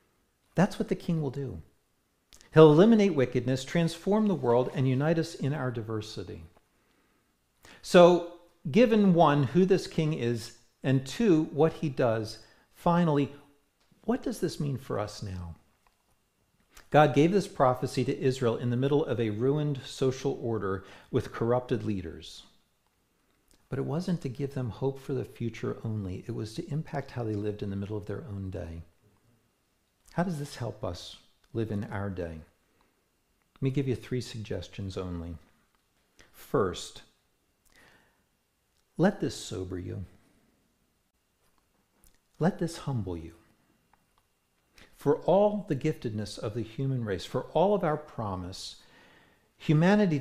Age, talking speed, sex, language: 50-69, 140 wpm, male, English